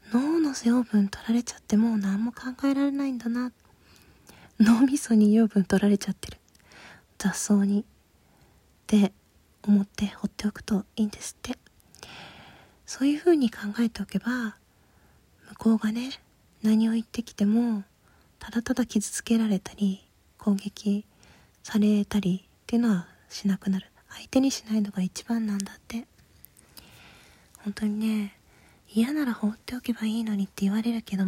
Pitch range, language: 200-235 Hz, Japanese